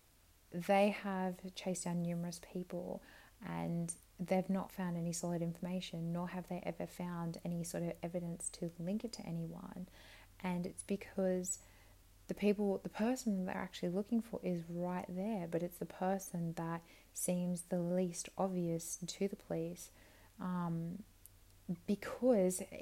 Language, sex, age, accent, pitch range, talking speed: English, female, 20-39, Australian, 170-195 Hz, 145 wpm